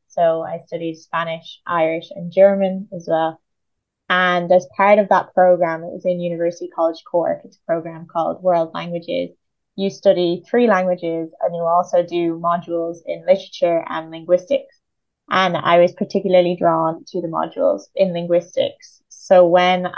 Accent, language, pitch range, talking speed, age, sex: British, English, 165-180 Hz, 155 wpm, 20-39, female